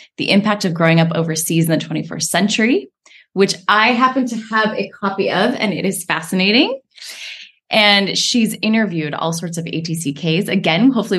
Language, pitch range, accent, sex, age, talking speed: English, 175-250 Hz, American, female, 20-39, 165 wpm